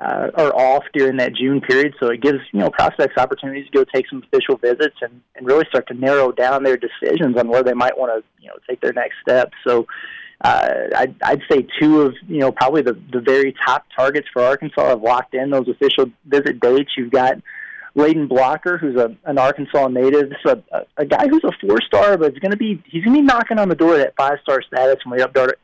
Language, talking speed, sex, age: English, 245 wpm, male, 30-49